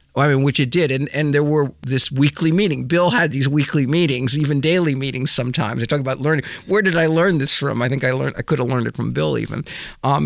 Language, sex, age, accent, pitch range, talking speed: English, male, 50-69, American, 115-145 Hz, 255 wpm